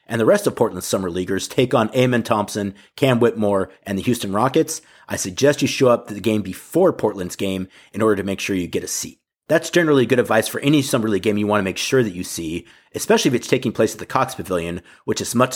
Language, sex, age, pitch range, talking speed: English, male, 30-49, 105-125 Hz, 255 wpm